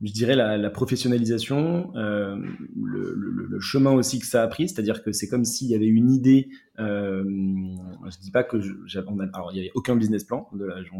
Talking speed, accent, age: 215 wpm, French, 20-39